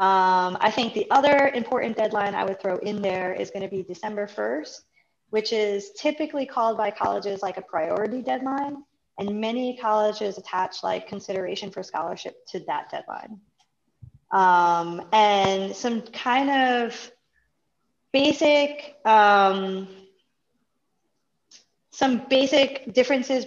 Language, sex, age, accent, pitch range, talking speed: English, female, 20-39, American, 190-235 Hz, 125 wpm